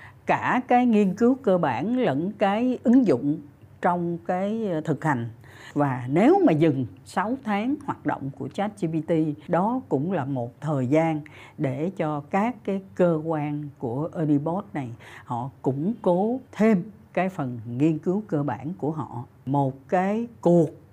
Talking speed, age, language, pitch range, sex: 155 wpm, 60-79, Vietnamese, 145-215 Hz, female